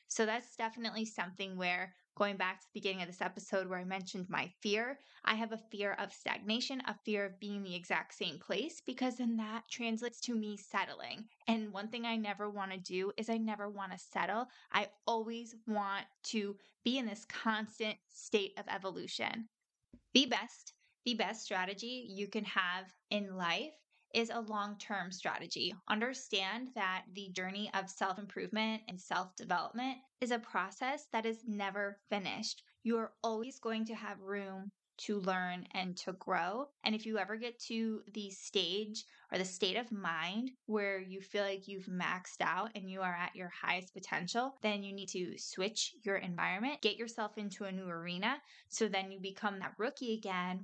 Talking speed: 180 wpm